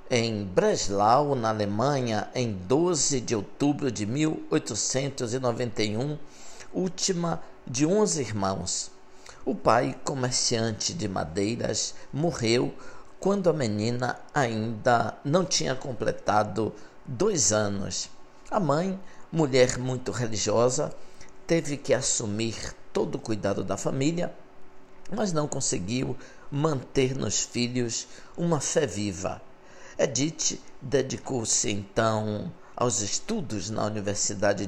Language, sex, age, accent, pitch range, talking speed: Portuguese, male, 60-79, Brazilian, 110-150 Hz, 100 wpm